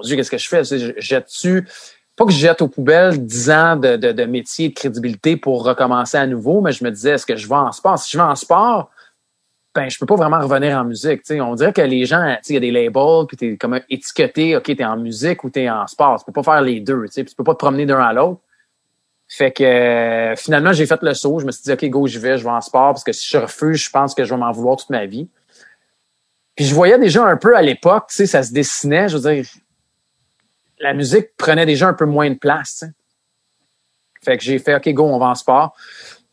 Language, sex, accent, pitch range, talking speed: French, male, Canadian, 135-160 Hz, 265 wpm